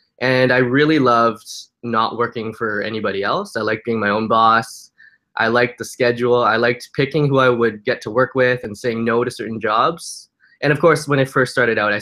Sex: male